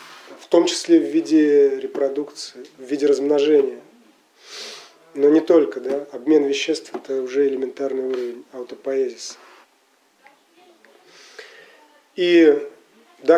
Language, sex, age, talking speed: English, male, 30-49, 100 wpm